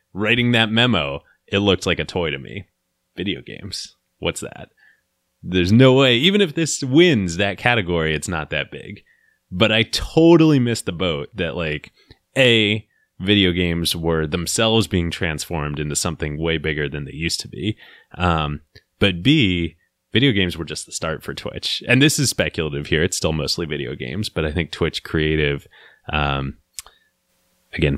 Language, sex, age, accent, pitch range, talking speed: English, male, 30-49, American, 75-95 Hz, 170 wpm